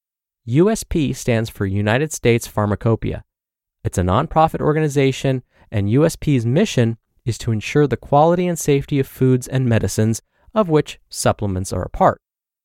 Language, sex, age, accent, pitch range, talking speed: English, male, 20-39, American, 110-150 Hz, 140 wpm